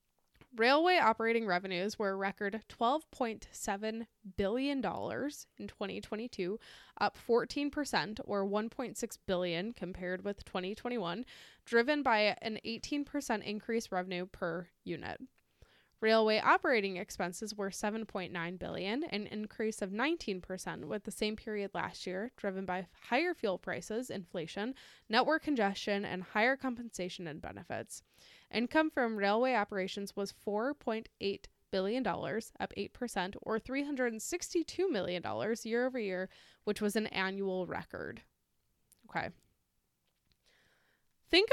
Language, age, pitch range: English, 10-29, 195-250 Hz